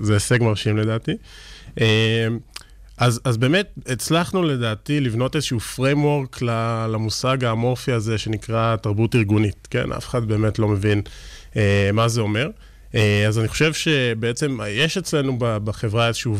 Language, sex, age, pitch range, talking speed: Hebrew, male, 20-39, 110-130 Hz, 135 wpm